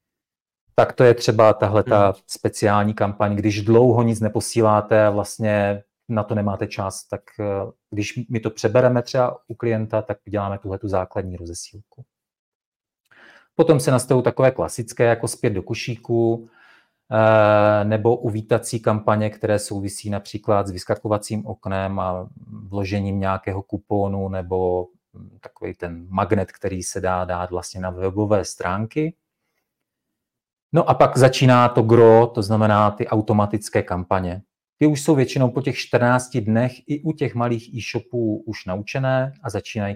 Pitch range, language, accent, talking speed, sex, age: 100-120 Hz, Czech, Slovak, 135 wpm, male, 30-49